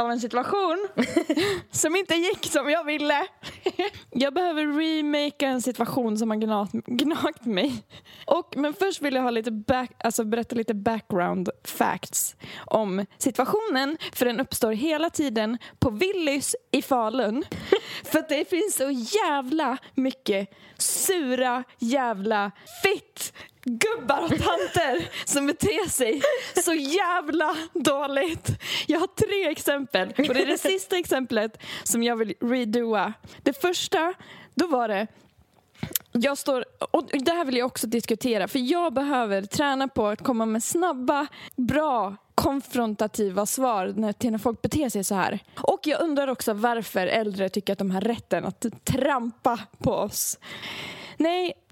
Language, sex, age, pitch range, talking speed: Swedish, female, 20-39, 230-315 Hz, 145 wpm